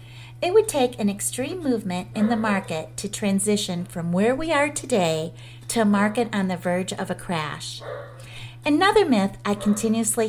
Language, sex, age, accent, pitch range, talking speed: English, female, 40-59, American, 140-235 Hz, 170 wpm